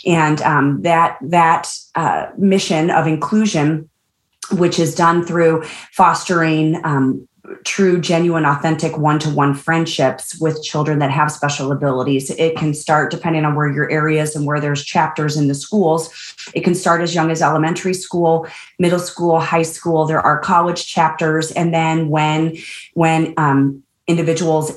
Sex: female